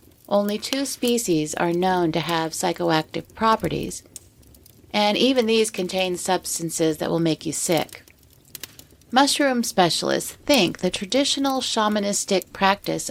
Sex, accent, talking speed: female, American, 120 wpm